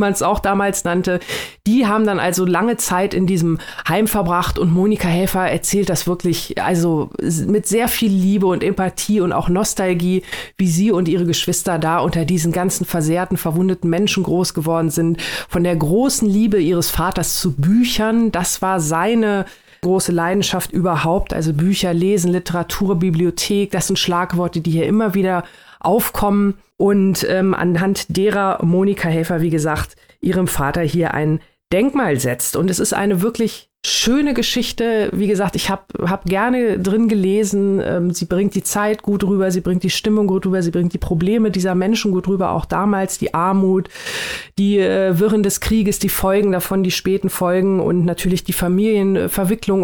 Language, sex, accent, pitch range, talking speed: German, female, German, 175-205 Hz, 170 wpm